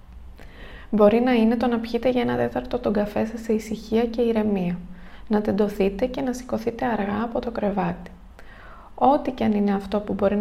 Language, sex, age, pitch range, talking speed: Greek, female, 20-39, 200-235 Hz, 185 wpm